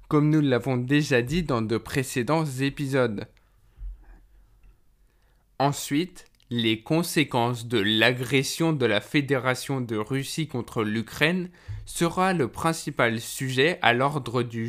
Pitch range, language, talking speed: 120-150 Hz, French, 115 wpm